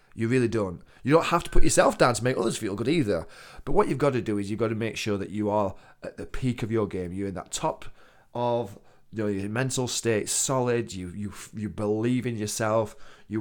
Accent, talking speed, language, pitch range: British, 245 wpm, English, 95-140 Hz